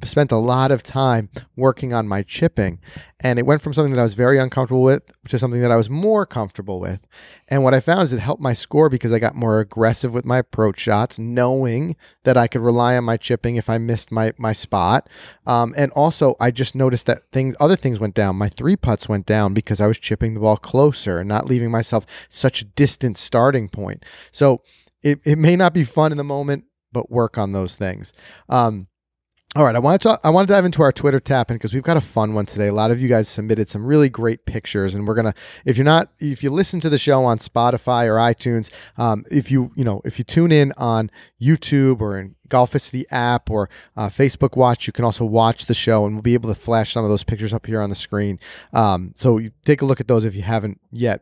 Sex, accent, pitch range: male, American, 110-135 Hz